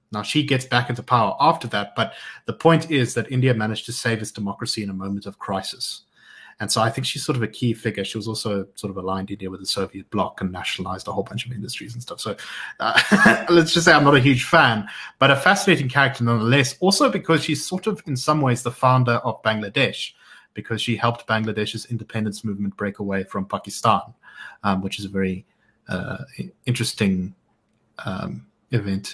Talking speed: 205 wpm